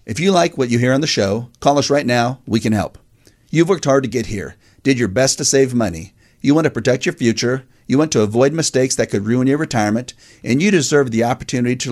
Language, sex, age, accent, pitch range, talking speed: English, male, 40-59, American, 110-140 Hz, 250 wpm